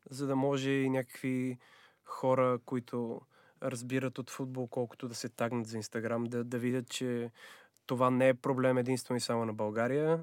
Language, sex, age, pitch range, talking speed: Bulgarian, male, 20-39, 120-140 Hz, 170 wpm